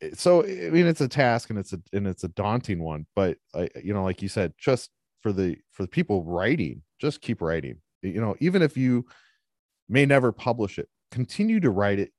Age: 30-49